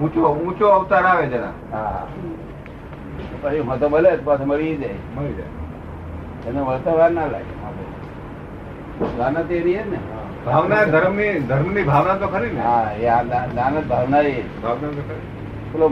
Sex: male